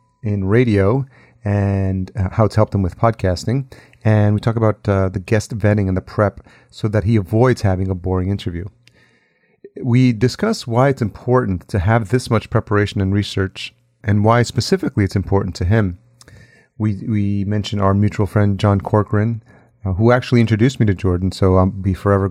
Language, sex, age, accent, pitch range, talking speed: English, male, 30-49, American, 95-115 Hz, 180 wpm